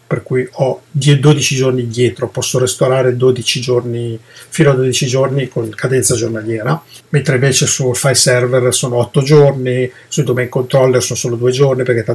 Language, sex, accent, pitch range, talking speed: Italian, male, native, 120-145 Hz, 165 wpm